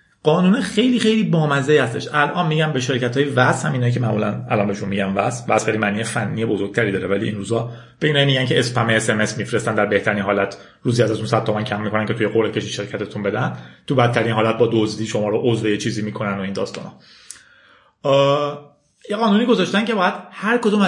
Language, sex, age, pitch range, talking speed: Persian, male, 30-49, 120-175 Hz, 200 wpm